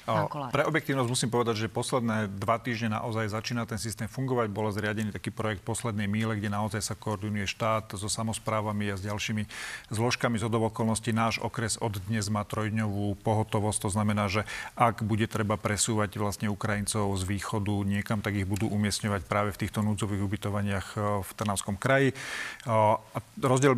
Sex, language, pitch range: male, Slovak, 105-115 Hz